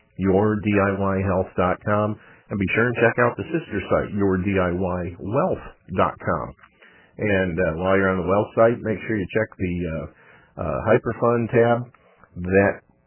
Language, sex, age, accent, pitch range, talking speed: English, male, 50-69, American, 90-110 Hz, 135 wpm